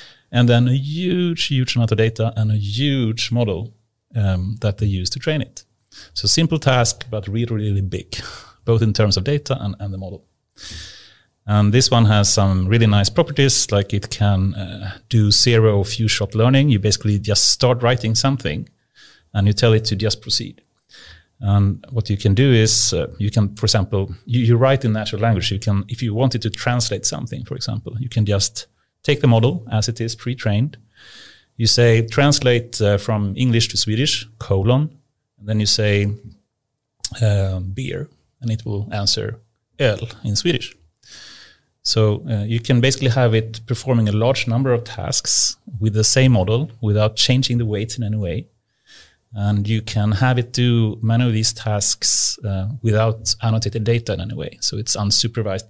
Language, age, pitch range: English, 30-49, 105-125 Hz